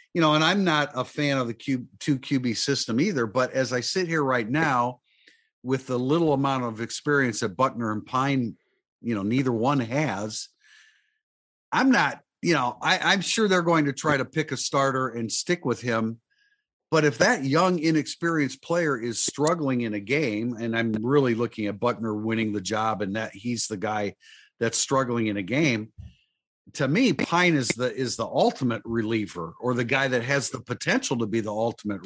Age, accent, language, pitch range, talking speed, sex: 50-69, American, English, 115-150 Hz, 195 wpm, male